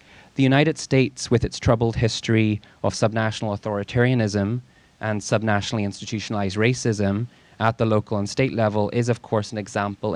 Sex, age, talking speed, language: male, 20-39, 150 wpm, English